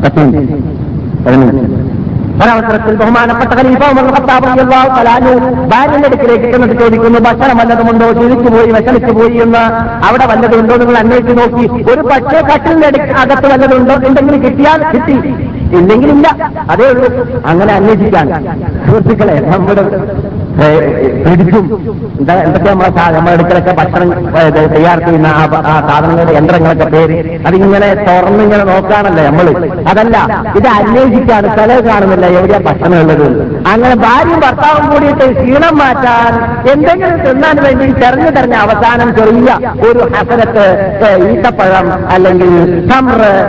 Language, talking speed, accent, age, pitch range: Malayalam, 95 wpm, native, 50-69, 185-250 Hz